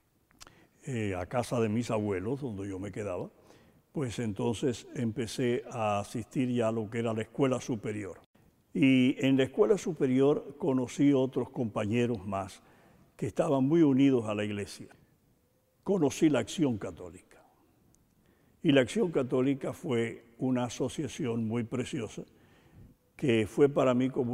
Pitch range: 110-135 Hz